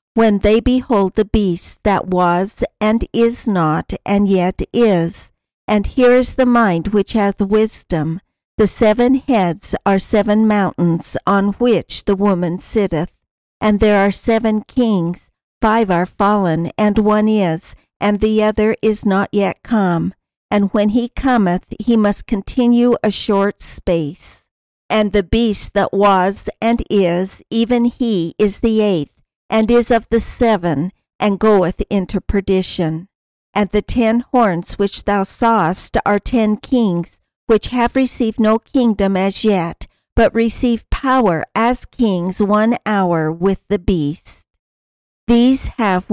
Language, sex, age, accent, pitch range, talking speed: English, female, 50-69, American, 190-225 Hz, 145 wpm